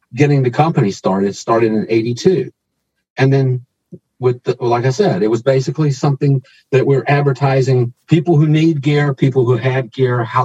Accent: American